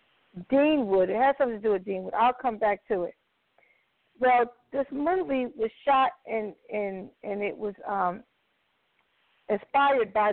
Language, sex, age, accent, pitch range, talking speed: English, female, 50-69, American, 225-275 Hz, 155 wpm